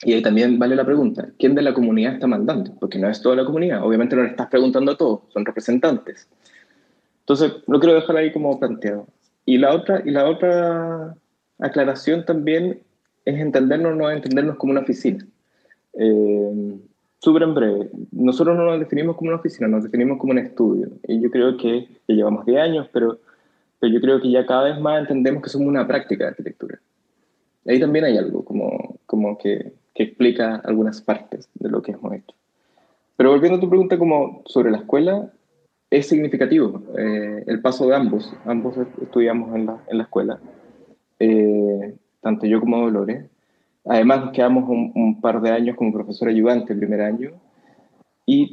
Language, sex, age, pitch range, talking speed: Spanish, male, 20-39, 115-160 Hz, 185 wpm